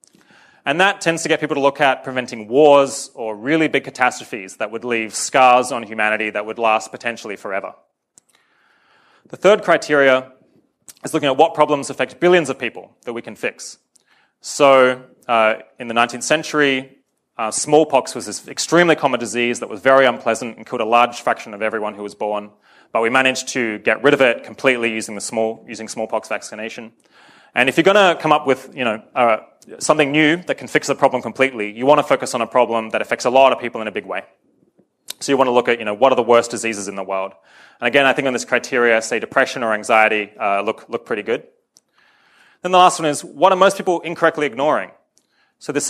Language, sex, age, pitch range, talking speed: English, male, 20-39, 115-145 Hz, 215 wpm